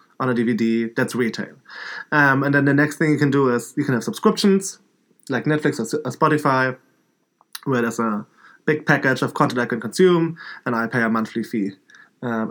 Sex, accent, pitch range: male, German, 115-145 Hz